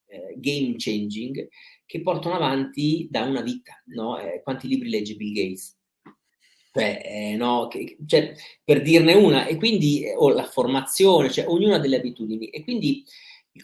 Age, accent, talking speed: 30-49, native, 160 wpm